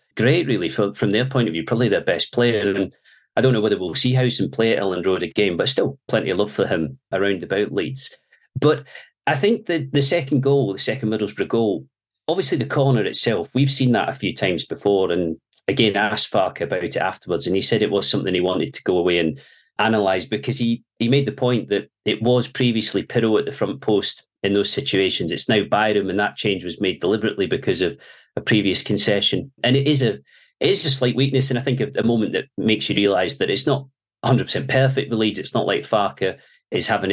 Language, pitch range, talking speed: English, 100-130 Hz, 230 wpm